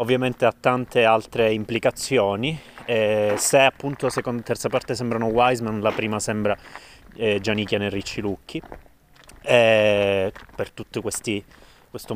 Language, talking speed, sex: Italian, 125 wpm, male